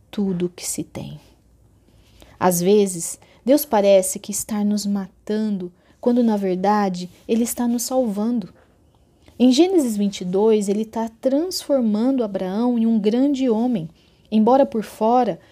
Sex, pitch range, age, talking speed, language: female, 185-235 Hz, 30-49, 130 wpm, Portuguese